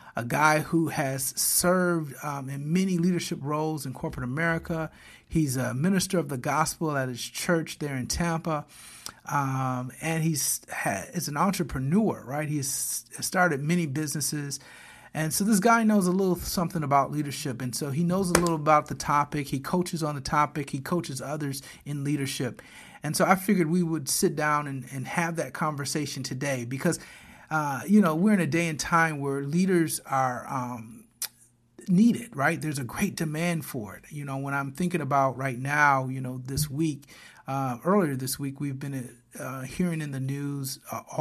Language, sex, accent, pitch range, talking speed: English, male, American, 135-165 Hz, 185 wpm